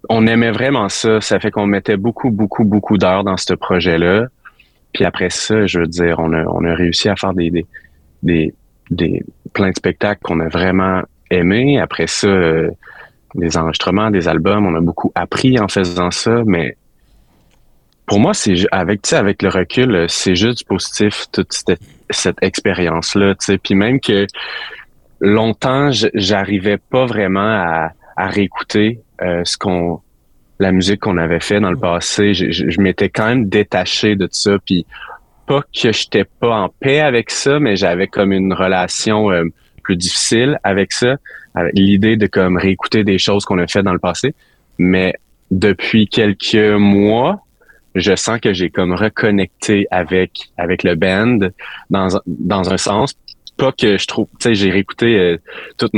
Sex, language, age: male, French, 30-49